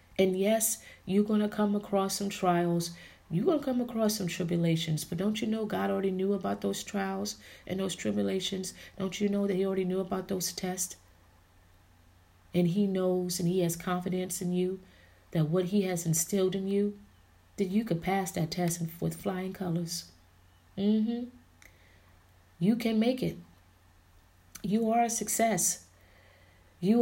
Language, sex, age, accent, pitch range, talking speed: English, female, 30-49, American, 160-210 Hz, 165 wpm